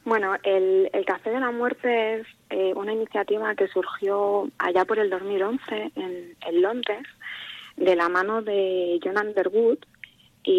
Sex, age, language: female, 20-39, Spanish